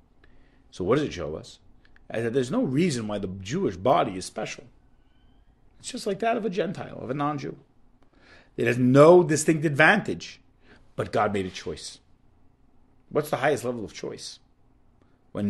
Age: 40-59